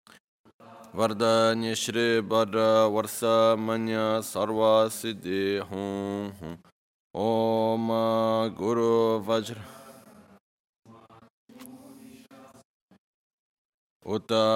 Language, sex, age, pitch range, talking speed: Italian, male, 20-39, 110-115 Hz, 40 wpm